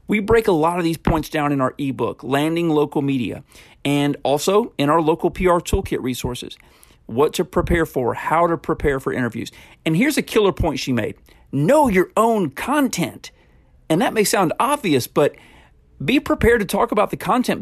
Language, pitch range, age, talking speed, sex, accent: English, 140-200 Hz, 40-59, 185 wpm, male, American